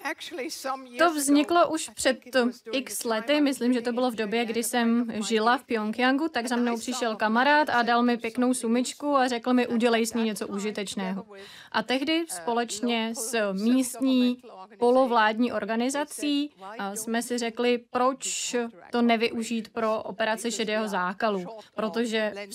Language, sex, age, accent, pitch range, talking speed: Czech, female, 30-49, native, 215-250 Hz, 145 wpm